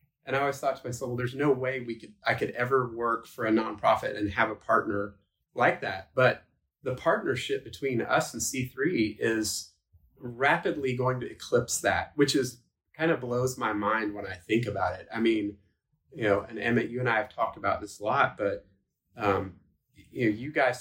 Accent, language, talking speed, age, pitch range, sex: American, English, 205 wpm, 30-49, 105-130 Hz, male